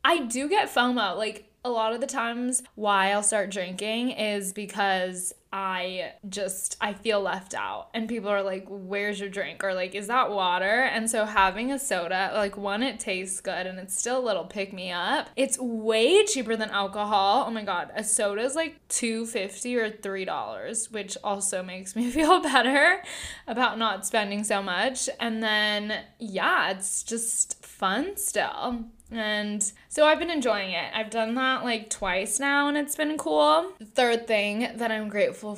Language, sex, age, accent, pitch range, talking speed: English, female, 10-29, American, 200-250 Hz, 175 wpm